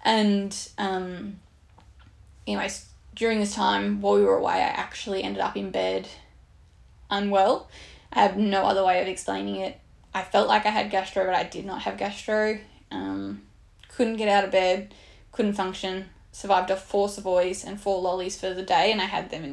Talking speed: 185 wpm